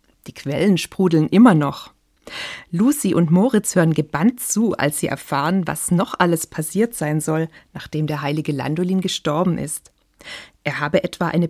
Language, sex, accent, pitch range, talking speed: German, female, German, 155-205 Hz, 155 wpm